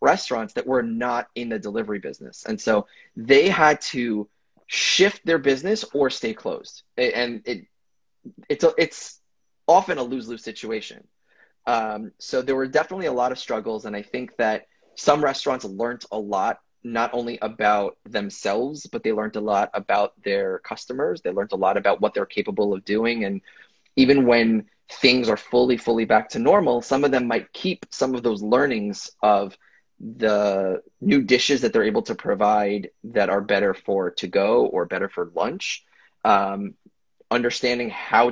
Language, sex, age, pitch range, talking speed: English, male, 20-39, 110-150 Hz, 170 wpm